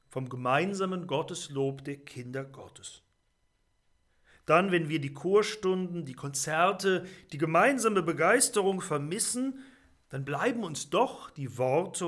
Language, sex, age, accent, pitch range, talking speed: German, male, 40-59, German, 130-175 Hz, 115 wpm